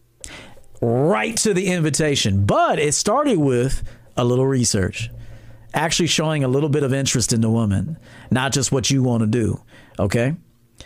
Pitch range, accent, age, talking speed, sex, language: 115-155 Hz, American, 40-59, 160 wpm, male, English